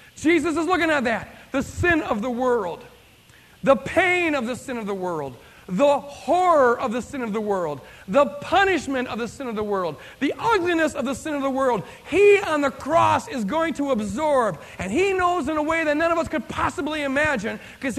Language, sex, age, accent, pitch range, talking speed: English, male, 40-59, American, 210-310 Hz, 215 wpm